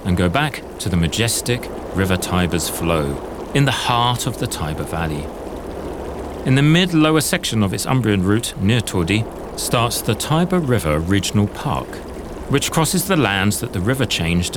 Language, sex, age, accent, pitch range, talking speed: Italian, male, 40-59, British, 95-150 Hz, 165 wpm